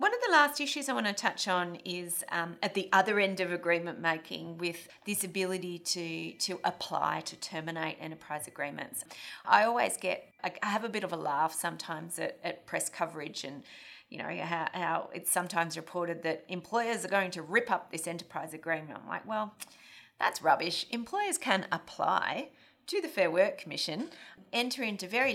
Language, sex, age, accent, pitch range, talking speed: English, female, 30-49, Australian, 165-210 Hz, 185 wpm